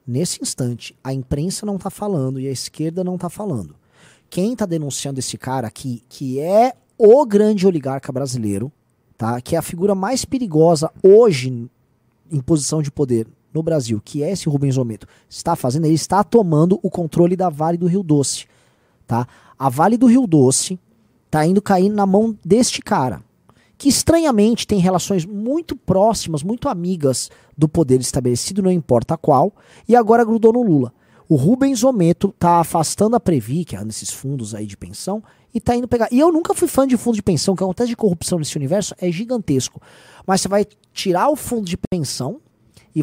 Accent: Brazilian